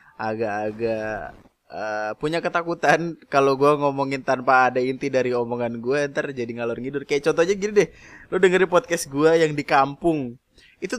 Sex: male